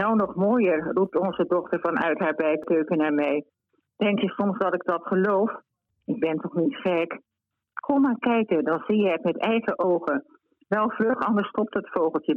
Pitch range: 170-205 Hz